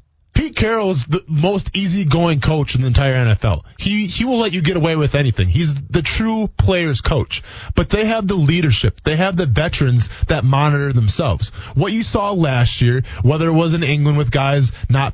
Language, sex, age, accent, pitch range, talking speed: English, male, 20-39, American, 125-160 Hz, 195 wpm